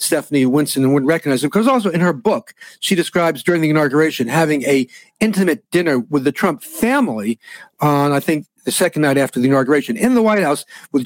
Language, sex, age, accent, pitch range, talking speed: English, male, 50-69, American, 145-195 Hz, 200 wpm